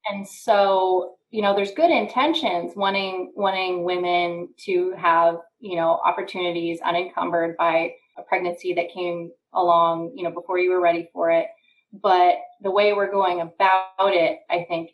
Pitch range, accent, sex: 180-225 Hz, American, female